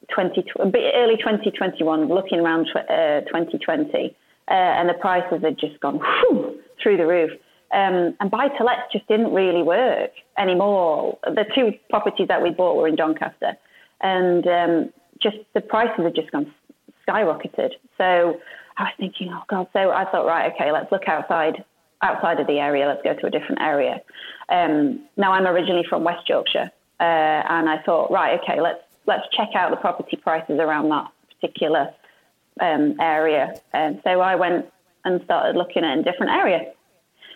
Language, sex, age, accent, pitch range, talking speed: English, female, 30-49, British, 170-220 Hz, 165 wpm